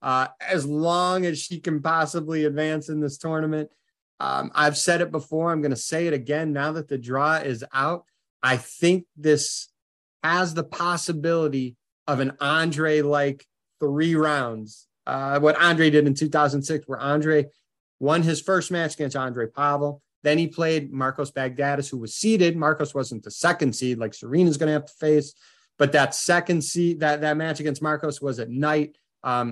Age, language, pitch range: 30-49, English, 135-165 Hz